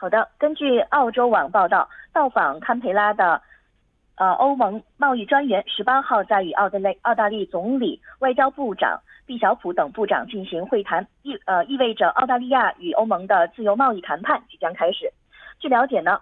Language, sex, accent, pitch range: Korean, female, Chinese, 195-275 Hz